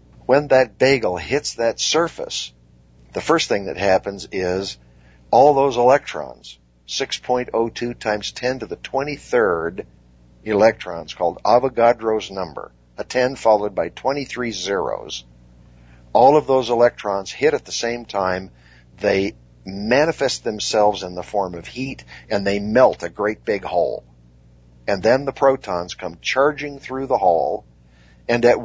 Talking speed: 140 wpm